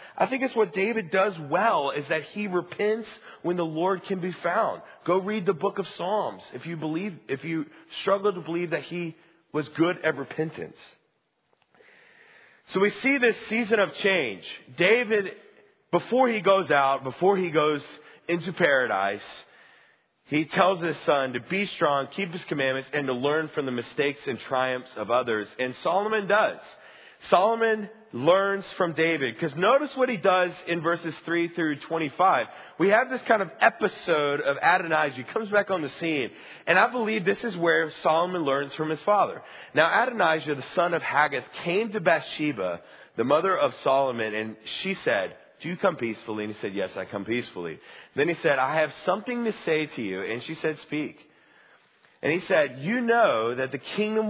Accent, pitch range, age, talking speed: American, 150-205 Hz, 40-59, 180 wpm